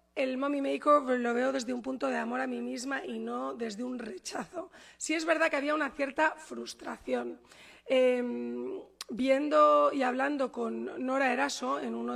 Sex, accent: female, Spanish